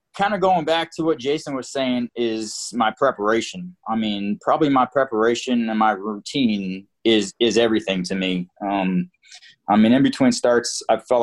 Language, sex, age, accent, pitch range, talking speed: English, male, 20-39, American, 105-140 Hz, 175 wpm